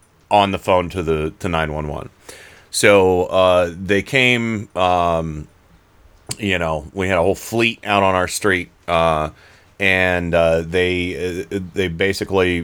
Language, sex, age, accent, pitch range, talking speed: English, male, 30-49, American, 85-100 Hz, 140 wpm